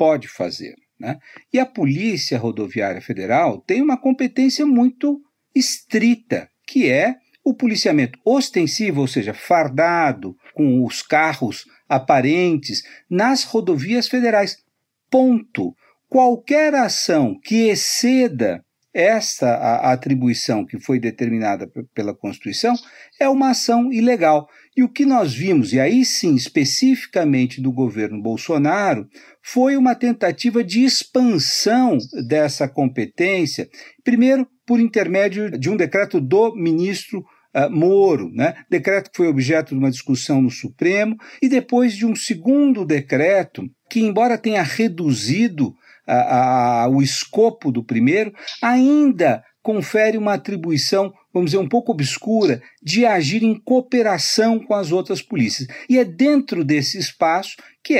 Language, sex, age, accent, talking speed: Portuguese, male, 50-69, Brazilian, 125 wpm